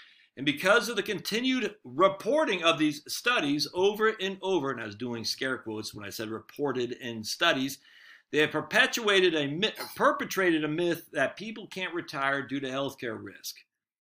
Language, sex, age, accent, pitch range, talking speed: English, male, 50-69, American, 140-215 Hz, 170 wpm